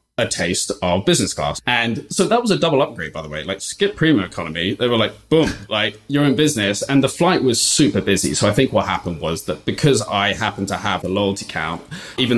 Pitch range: 95-120 Hz